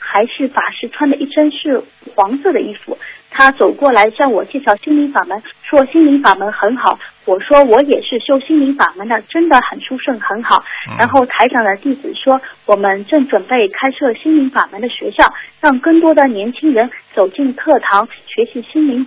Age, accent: 30-49, native